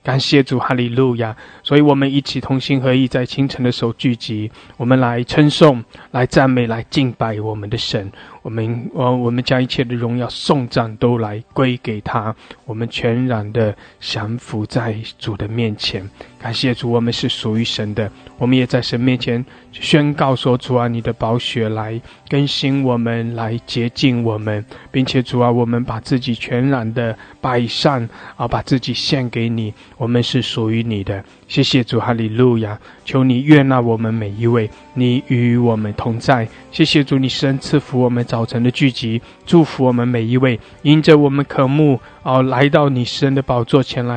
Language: English